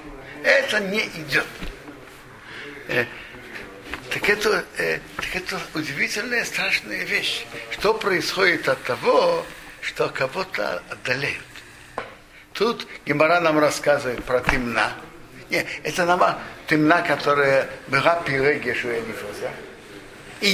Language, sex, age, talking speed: Russian, male, 60-79, 100 wpm